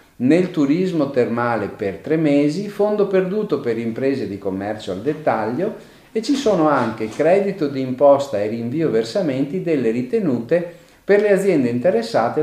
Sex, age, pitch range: male, 40-59, 115-175 Hz